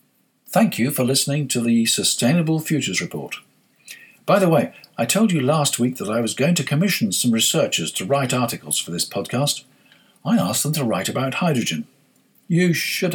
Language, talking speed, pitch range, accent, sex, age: English, 185 wpm, 125-175 Hz, British, male, 50-69